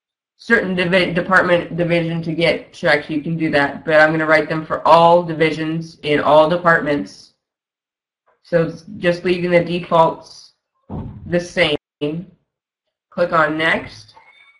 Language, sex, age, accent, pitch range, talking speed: English, female, 20-39, American, 160-180 Hz, 130 wpm